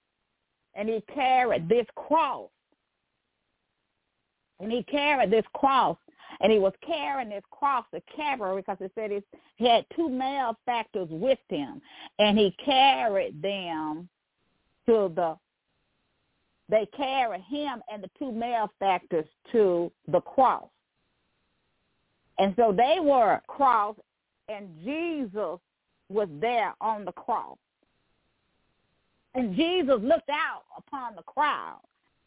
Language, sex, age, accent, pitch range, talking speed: English, female, 40-59, American, 200-280 Hz, 120 wpm